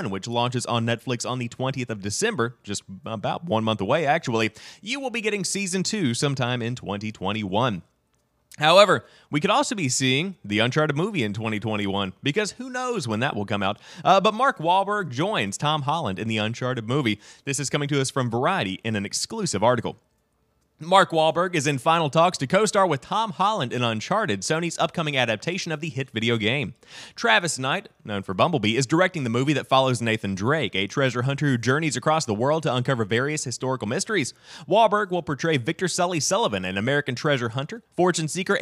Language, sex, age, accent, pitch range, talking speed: English, male, 30-49, American, 115-165 Hz, 195 wpm